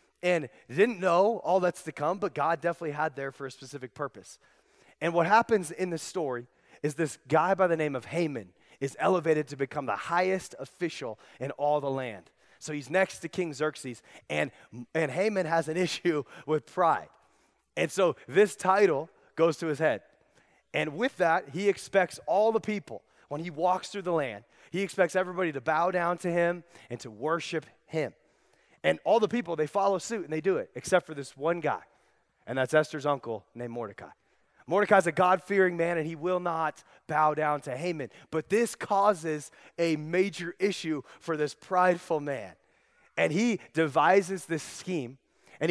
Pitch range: 145-185 Hz